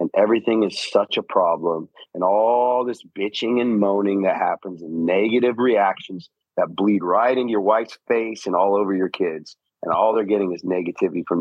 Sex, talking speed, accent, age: male, 190 wpm, American, 40-59